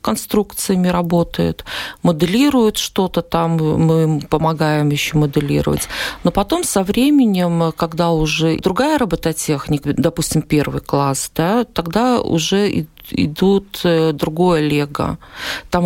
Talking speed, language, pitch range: 105 wpm, Russian, 155-195 Hz